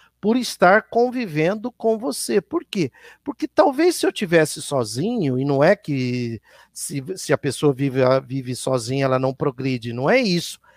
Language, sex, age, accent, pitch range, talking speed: Portuguese, male, 50-69, Brazilian, 145-230 Hz, 165 wpm